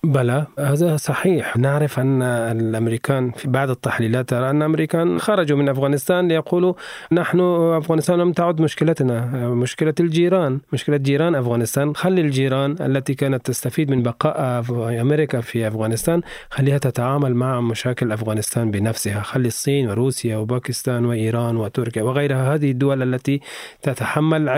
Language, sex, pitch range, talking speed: Arabic, male, 120-150 Hz, 125 wpm